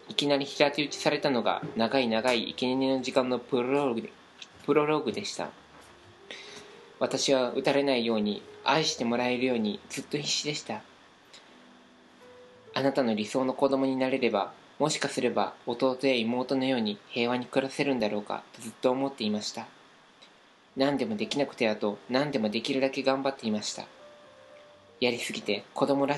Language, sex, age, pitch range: Japanese, male, 20-39, 115-135 Hz